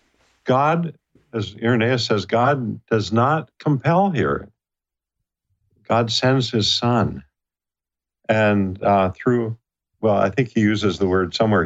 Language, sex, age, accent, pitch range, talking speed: English, male, 50-69, American, 95-130 Hz, 125 wpm